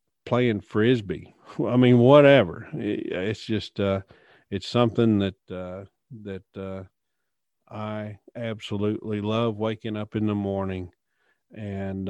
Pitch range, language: 100-120 Hz, English